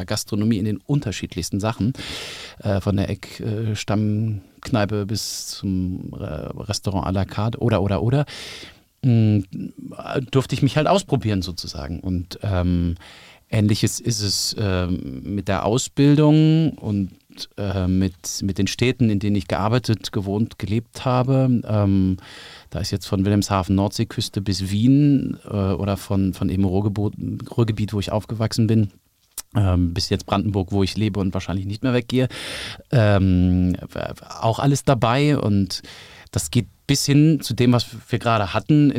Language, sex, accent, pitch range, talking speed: German, male, German, 95-120 Hz, 140 wpm